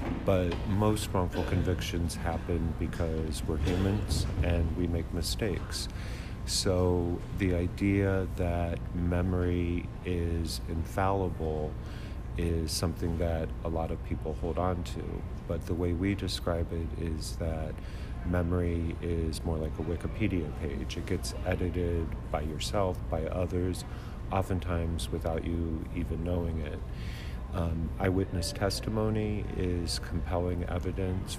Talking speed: 120 wpm